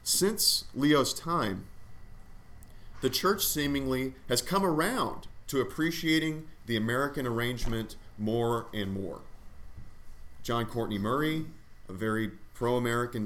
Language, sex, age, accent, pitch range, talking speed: English, male, 40-59, American, 100-125 Hz, 105 wpm